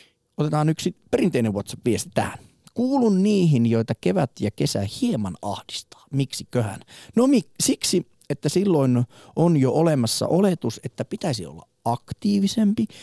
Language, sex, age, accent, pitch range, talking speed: Finnish, male, 30-49, native, 110-165 Hz, 120 wpm